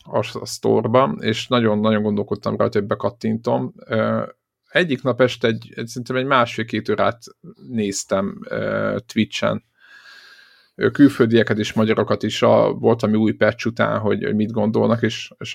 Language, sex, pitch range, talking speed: Hungarian, male, 110-125 Hz, 125 wpm